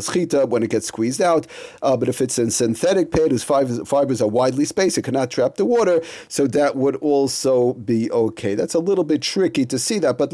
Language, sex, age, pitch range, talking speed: English, male, 40-59, 120-150 Hz, 220 wpm